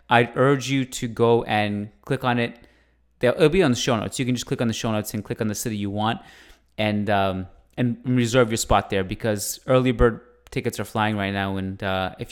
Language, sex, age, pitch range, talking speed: English, male, 20-39, 105-125 Hz, 240 wpm